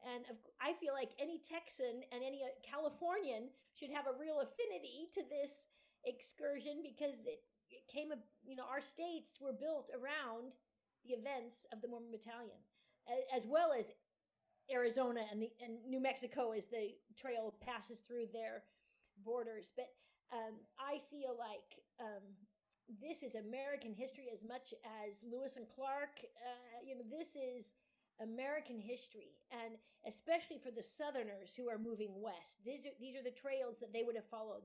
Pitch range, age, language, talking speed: 225-280 Hz, 40-59, English, 160 wpm